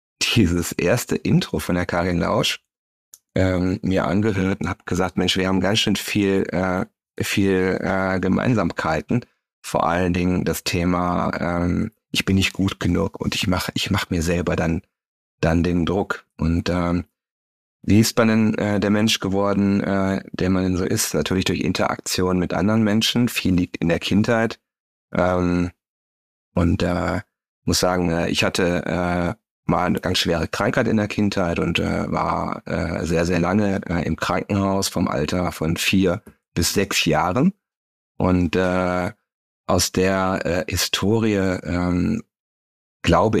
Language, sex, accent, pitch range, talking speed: German, male, German, 85-100 Hz, 160 wpm